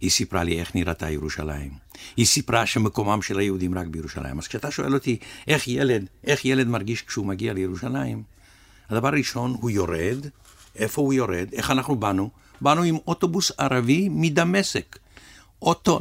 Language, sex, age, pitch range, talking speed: Hebrew, male, 60-79, 95-130 Hz, 155 wpm